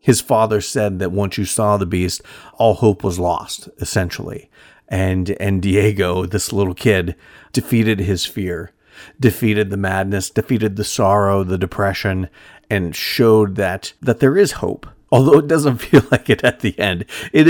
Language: English